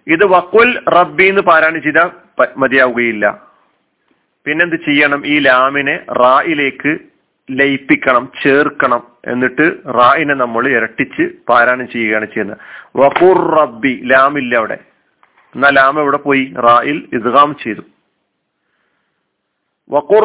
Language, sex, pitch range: Malayalam, male, 135-170 Hz